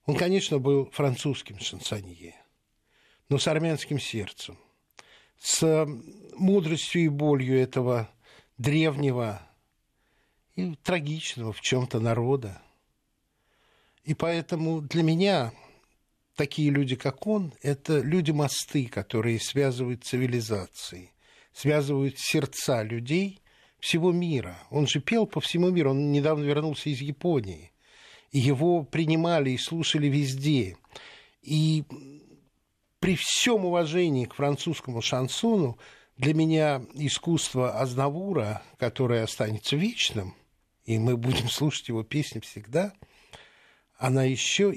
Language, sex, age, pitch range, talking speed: Russian, male, 60-79, 115-155 Hz, 105 wpm